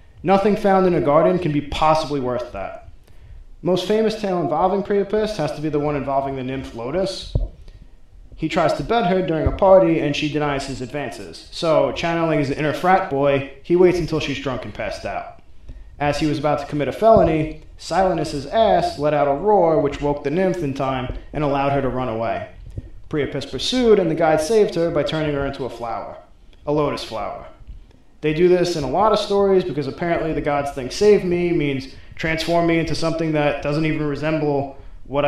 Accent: American